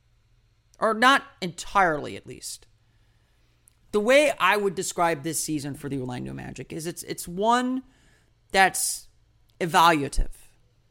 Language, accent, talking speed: English, American, 120 wpm